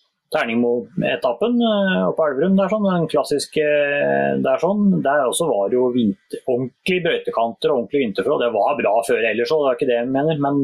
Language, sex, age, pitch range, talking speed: English, male, 30-49, 130-165 Hz, 190 wpm